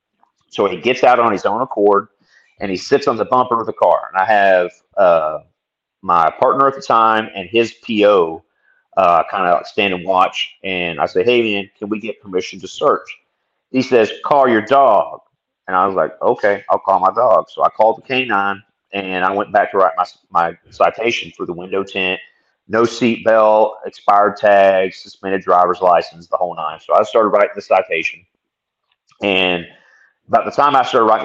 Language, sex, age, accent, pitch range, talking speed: English, male, 30-49, American, 95-120 Hz, 200 wpm